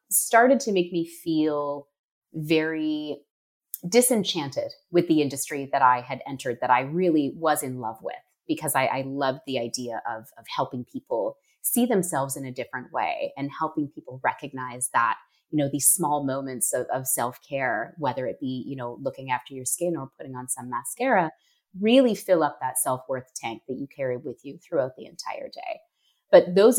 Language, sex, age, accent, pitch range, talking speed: English, female, 30-49, American, 135-200 Hz, 180 wpm